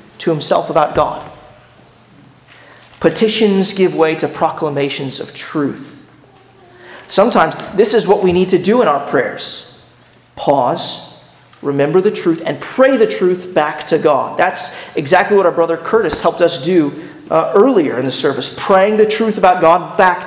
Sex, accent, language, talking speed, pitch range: male, American, English, 155 wpm, 165-210 Hz